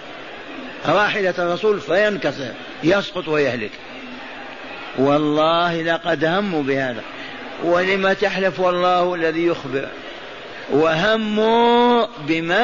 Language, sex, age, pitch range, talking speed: Arabic, male, 50-69, 170-210 Hz, 75 wpm